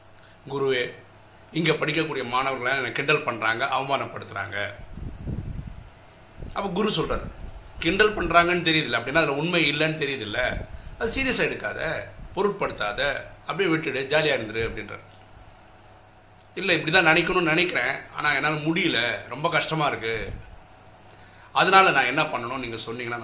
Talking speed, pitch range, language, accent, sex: 115 wpm, 105-165 Hz, Tamil, native, male